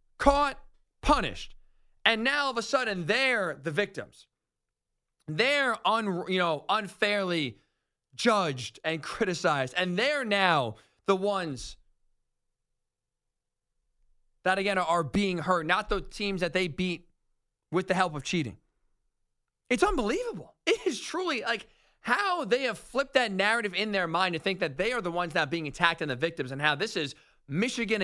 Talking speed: 150 wpm